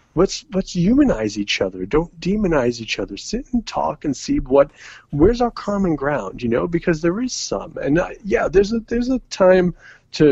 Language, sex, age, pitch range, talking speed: English, male, 40-59, 120-180 Hz, 200 wpm